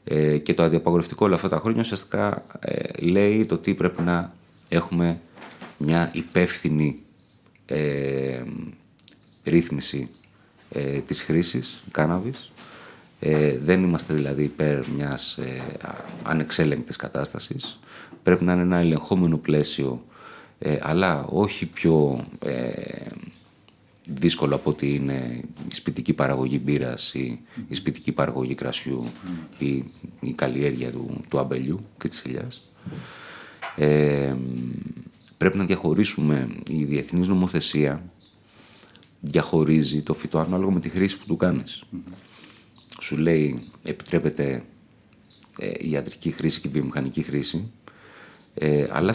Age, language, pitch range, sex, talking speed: 30-49, Greek, 70-90 Hz, male, 115 wpm